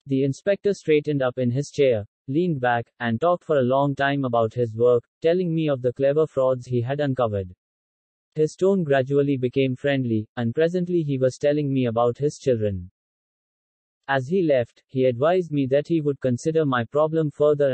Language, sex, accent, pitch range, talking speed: English, male, Indian, 120-155 Hz, 185 wpm